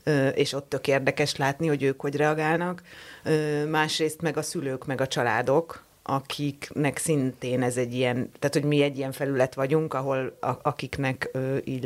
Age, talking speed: 30-49, 155 wpm